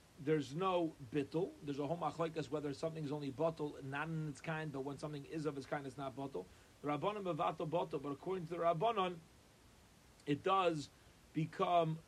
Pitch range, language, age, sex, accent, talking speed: 145-185 Hz, English, 40-59, male, American, 185 wpm